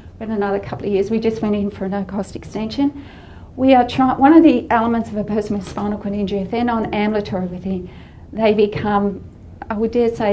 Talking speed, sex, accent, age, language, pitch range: 215 wpm, female, Australian, 40-59, English, 195-225 Hz